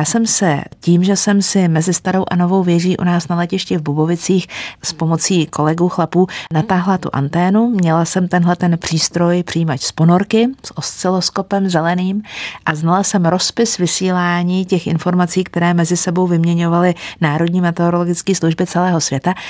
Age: 50-69